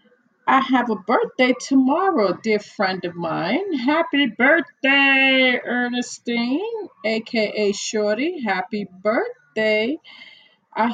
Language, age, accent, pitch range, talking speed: English, 40-59, American, 180-230 Hz, 95 wpm